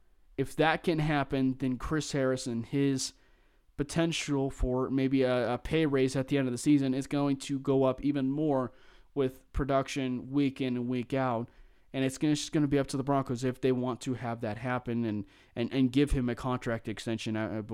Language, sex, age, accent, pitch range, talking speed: English, male, 30-49, American, 120-145 Hz, 210 wpm